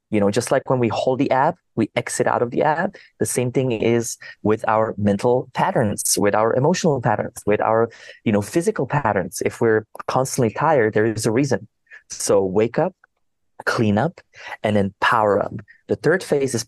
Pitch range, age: 110-125 Hz, 30-49